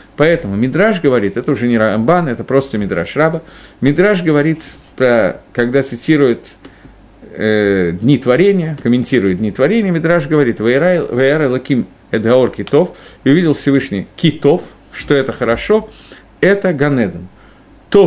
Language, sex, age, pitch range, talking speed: Russian, male, 50-69, 115-165 Hz, 125 wpm